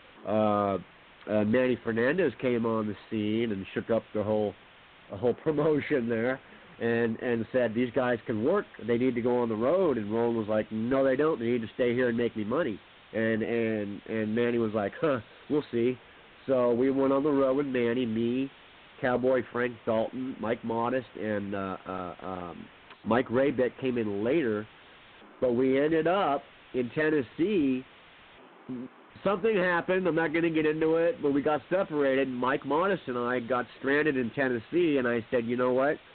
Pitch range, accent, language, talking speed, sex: 115-135 Hz, American, English, 185 wpm, male